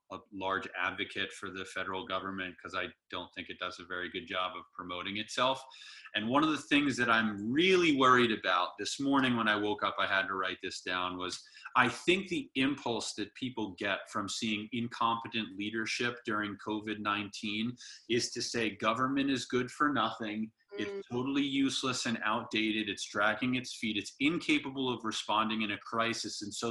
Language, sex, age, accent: English, male, 30-49, American